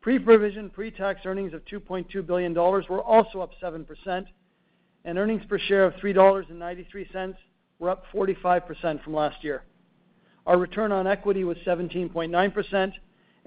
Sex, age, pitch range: male, 50-69, 175-195 Hz